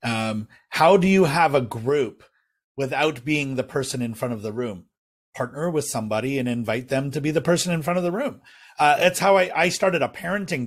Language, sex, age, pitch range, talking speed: English, male, 40-59, 115-145 Hz, 220 wpm